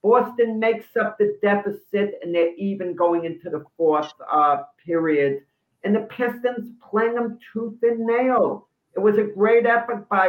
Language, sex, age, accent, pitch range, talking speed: English, male, 50-69, American, 145-205 Hz, 165 wpm